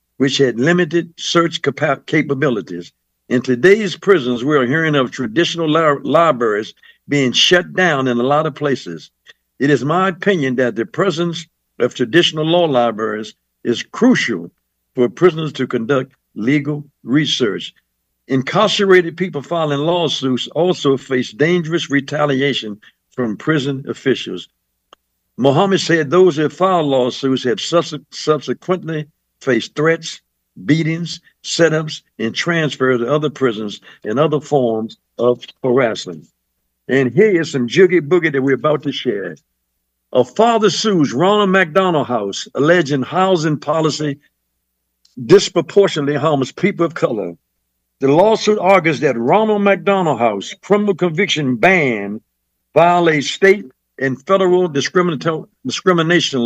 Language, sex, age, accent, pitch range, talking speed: English, male, 60-79, American, 125-175 Hz, 120 wpm